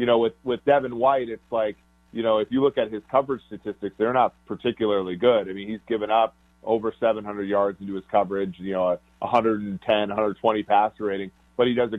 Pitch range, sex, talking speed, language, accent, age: 100-120 Hz, male, 210 wpm, English, American, 30-49